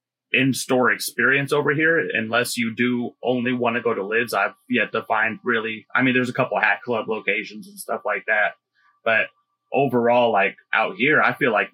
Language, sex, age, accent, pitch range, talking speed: English, male, 30-49, American, 105-130 Hz, 195 wpm